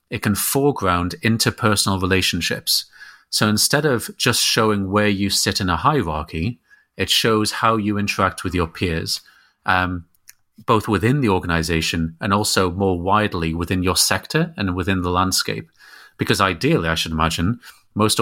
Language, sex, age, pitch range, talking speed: German, male, 30-49, 90-110 Hz, 150 wpm